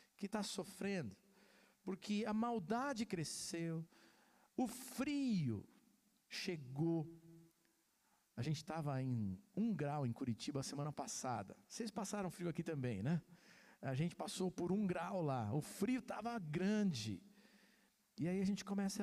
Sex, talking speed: male, 135 wpm